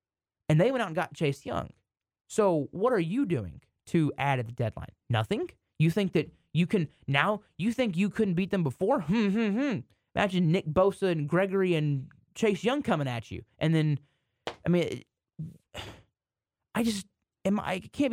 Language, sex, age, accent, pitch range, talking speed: English, male, 20-39, American, 145-225 Hz, 180 wpm